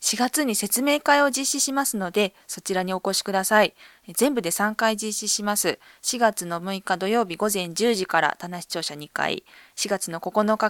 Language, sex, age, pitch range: Japanese, female, 20-39, 180-235 Hz